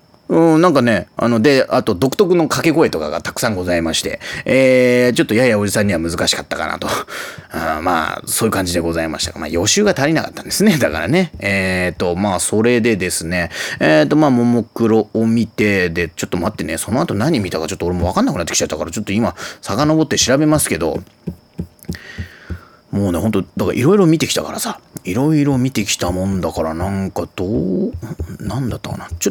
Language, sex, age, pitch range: Japanese, male, 30-49, 90-120 Hz